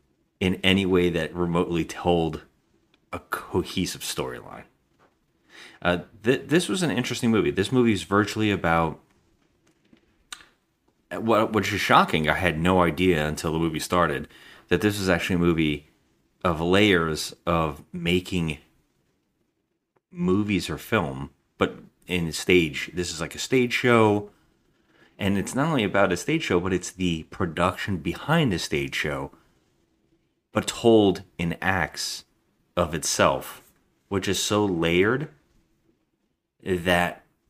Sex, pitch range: male, 85-100 Hz